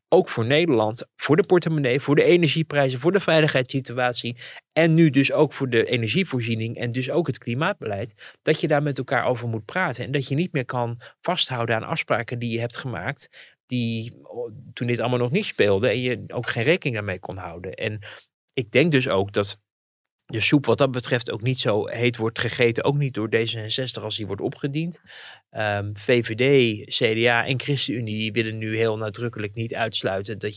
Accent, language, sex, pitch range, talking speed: Dutch, Dutch, male, 105-130 Hz, 190 wpm